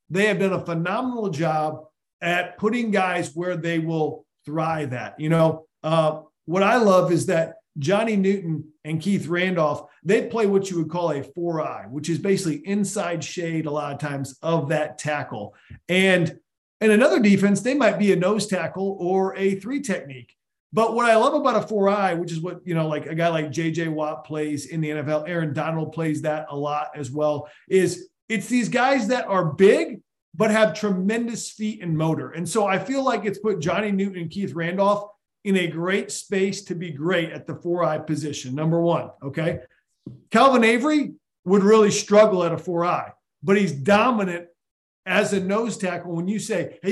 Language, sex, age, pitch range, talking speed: English, male, 40-59, 160-205 Hz, 195 wpm